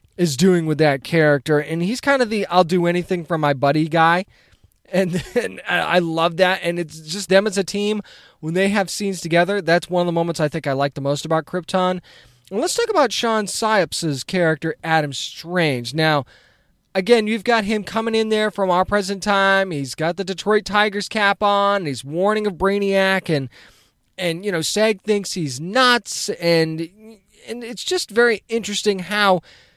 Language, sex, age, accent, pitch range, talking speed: English, male, 20-39, American, 160-205 Hz, 190 wpm